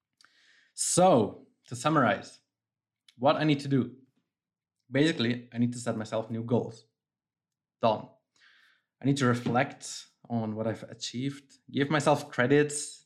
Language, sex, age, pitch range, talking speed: English, male, 20-39, 115-140 Hz, 130 wpm